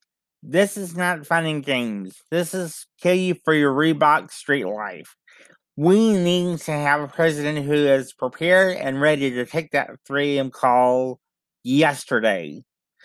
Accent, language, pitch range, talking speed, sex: American, English, 140-180 Hz, 150 wpm, male